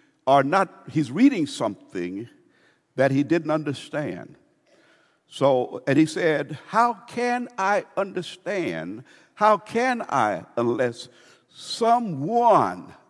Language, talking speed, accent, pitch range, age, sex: English, 100 wpm, American, 145-215 Hz, 60-79, male